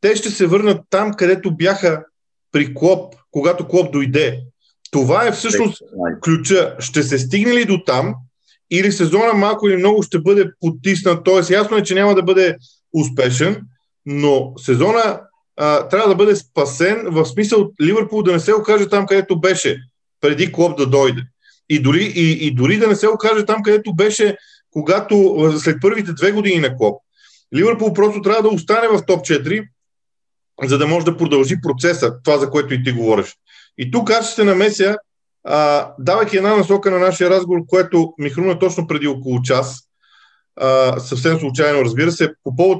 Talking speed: 170 wpm